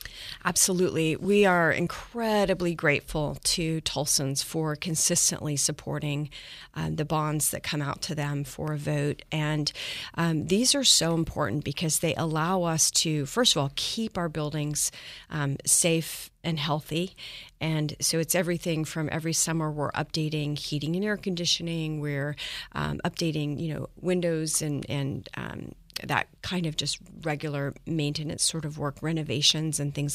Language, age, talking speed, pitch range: English, 40-59, 150 wpm, 145-165 Hz